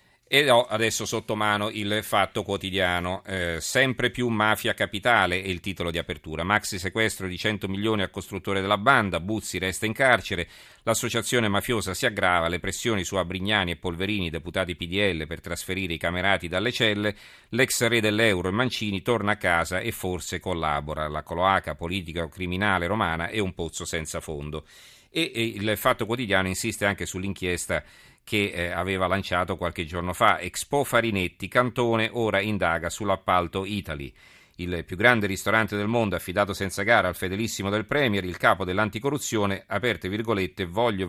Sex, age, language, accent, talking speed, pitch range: male, 40-59, Italian, native, 160 wpm, 90-110 Hz